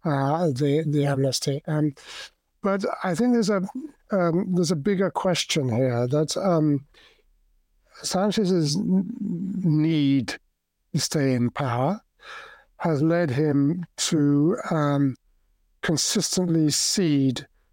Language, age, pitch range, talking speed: English, 60-79, 140-175 Hz, 105 wpm